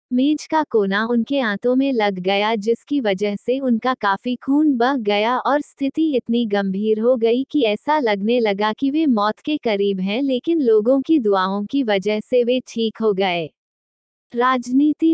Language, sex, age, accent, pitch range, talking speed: Hindi, female, 20-39, native, 210-265 Hz, 175 wpm